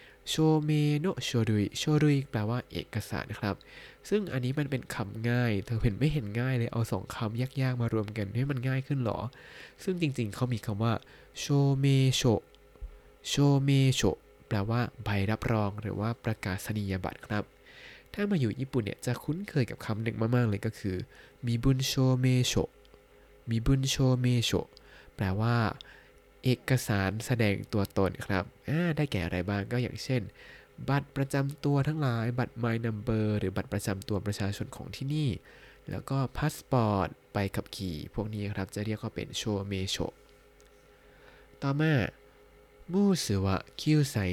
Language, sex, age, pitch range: Thai, male, 20-39, 105-135 Hz